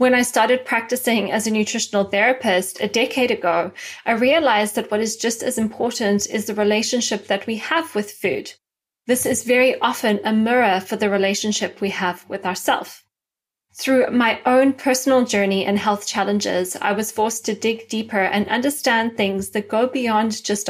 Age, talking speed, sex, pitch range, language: 20-39, 175 wpm, female, 205-250 Hz, English